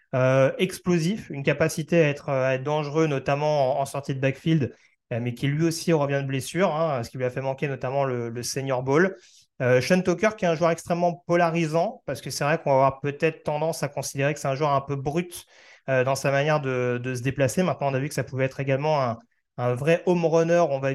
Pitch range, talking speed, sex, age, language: 130-160 Hz, 245 wpm, male, 30-49, French